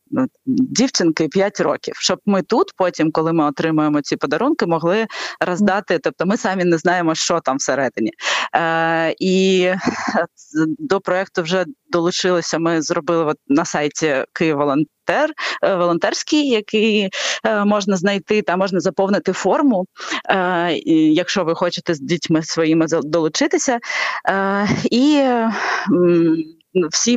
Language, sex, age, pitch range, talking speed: Ukrainian, female, 20-39, 170-210 Hz, 120 wpm